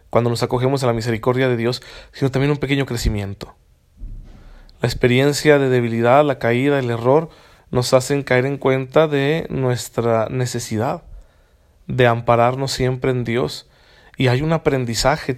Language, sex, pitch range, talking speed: Spanish, male, 115-145 Hz, 150 wpm